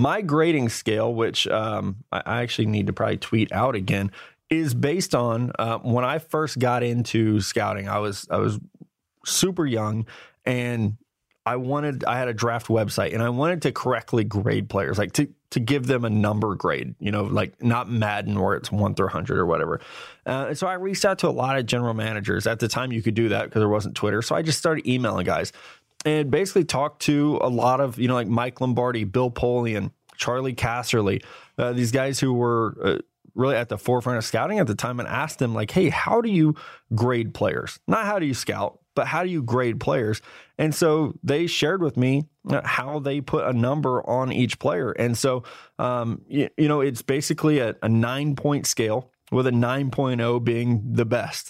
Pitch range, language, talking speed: 115-135 Hz, English, 205 wpm